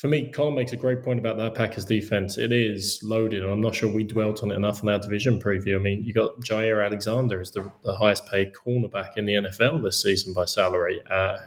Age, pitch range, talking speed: 20-39, 100-125 Hz, 240 wpm